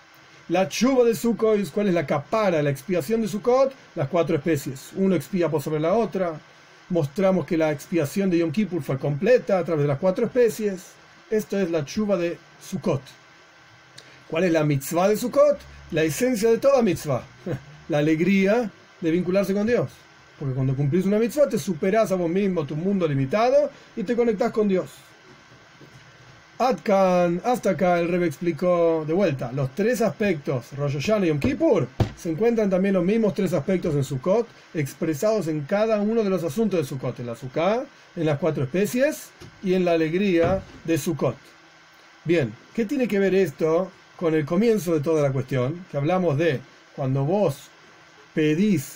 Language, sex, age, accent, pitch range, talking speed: English, male, 40-59, Argentinian, 155-205 Hz, 175 wpm